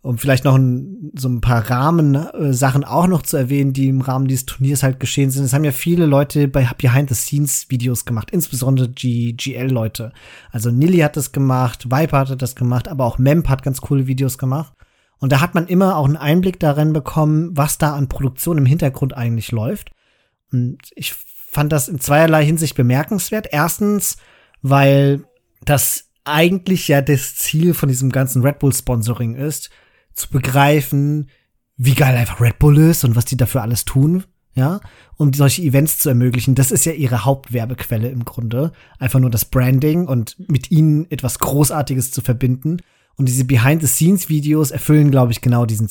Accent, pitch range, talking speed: German, 130-155 Hz, 175 wpm